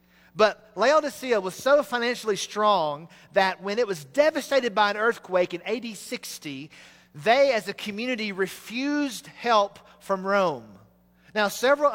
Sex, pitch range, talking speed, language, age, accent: male, 180-230 Hz, 135 wpm, English, 40-59, American